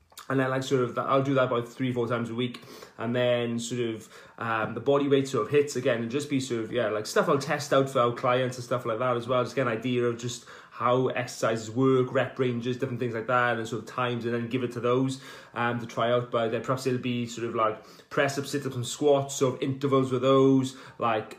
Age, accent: 20-39, British